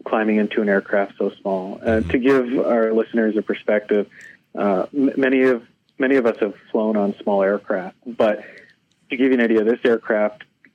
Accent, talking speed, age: American, 185 wpm, 40-59